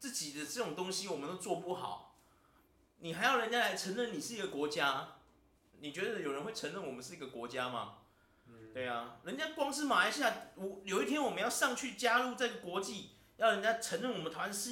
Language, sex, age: Chinese, male, 30-49